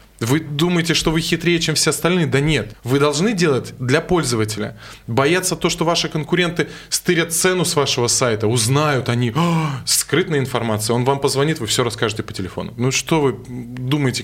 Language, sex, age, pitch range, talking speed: Russian, male, 20-39, 110-145 Hz, 175 wpm